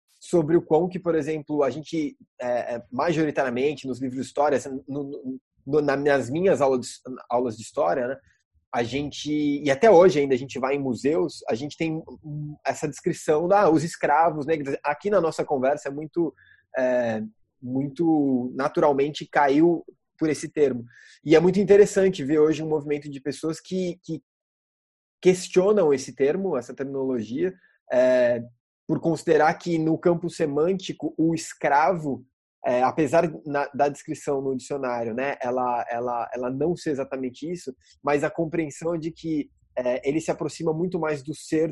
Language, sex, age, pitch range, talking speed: Portuguese, male, 20-39, 130-160 Hz, 160 wpm